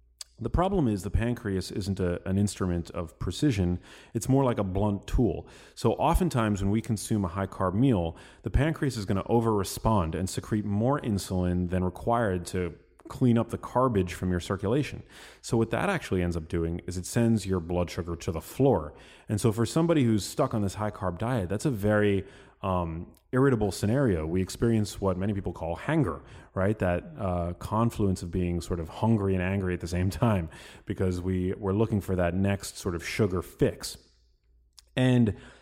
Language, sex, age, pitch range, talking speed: English, male, 30-49, 90-115 Hz, 185 wpm